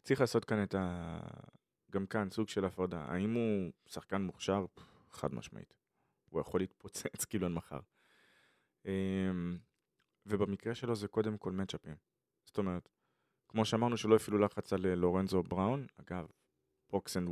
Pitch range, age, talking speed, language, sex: 90-110 Hz, 20-39, 130 wpm, Hebrew, male